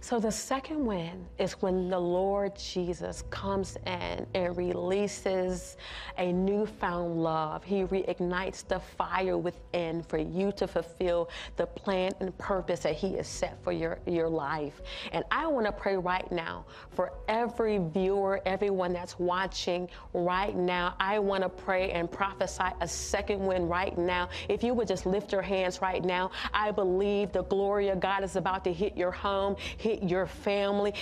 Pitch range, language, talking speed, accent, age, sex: 185-215 Hz, English, 165 wpm, American, 40-59, female